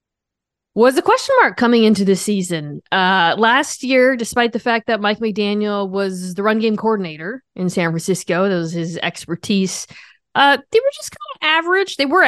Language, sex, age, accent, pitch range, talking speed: English, female, 20-39, American, 170-225 Hz, 185 wpm